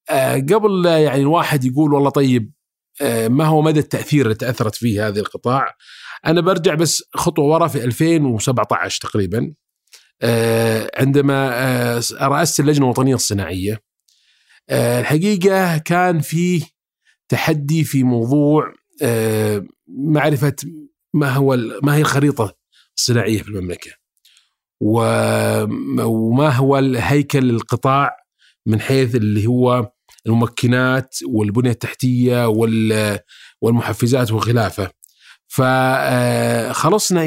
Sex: male